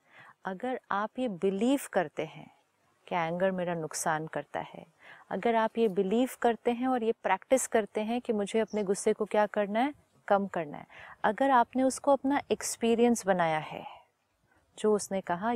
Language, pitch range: Hindi, 185-240 Hz